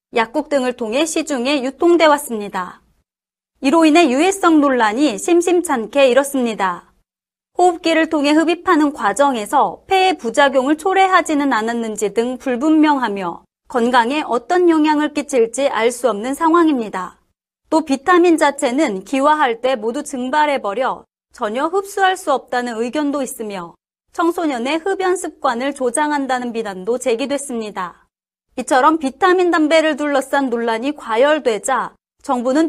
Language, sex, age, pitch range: Korean, female, 30-49, 245-320 Hz